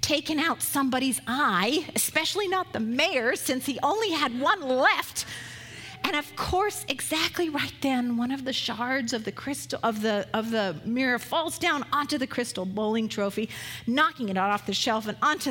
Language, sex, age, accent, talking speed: English, female, 40-59, American, 180 wpm